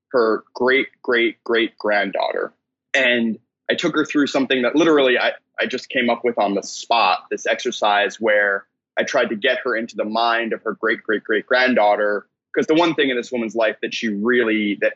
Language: English